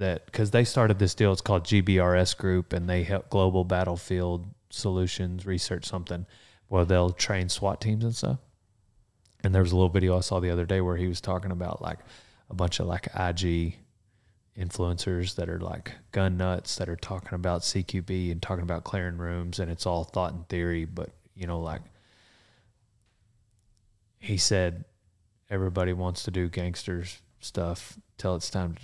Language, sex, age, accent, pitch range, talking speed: English, male, 30-49, American, 90-105 Hz, 175 wpm